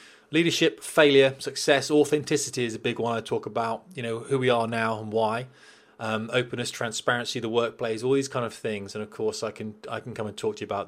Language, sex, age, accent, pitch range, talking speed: English, male, 20-39, British, 110-130 Hz, 230 wpm